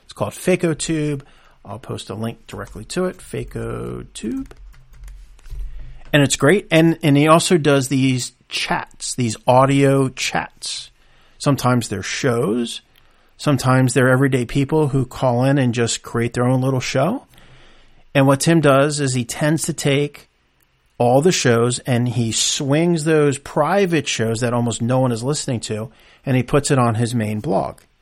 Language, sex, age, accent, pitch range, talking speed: English, male, 40-59, American, 120-150 Hz, 160 wpm